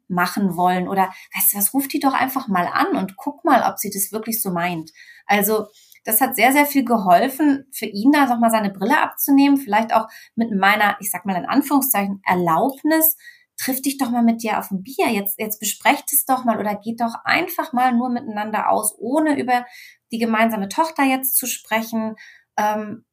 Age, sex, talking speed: 30-49, female, 200 wpm